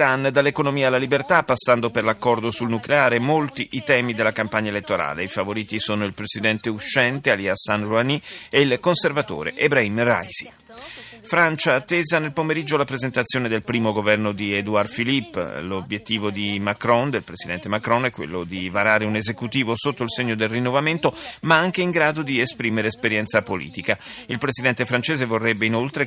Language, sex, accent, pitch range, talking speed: Italian, male, native, 110-145 Hz, 160 wpm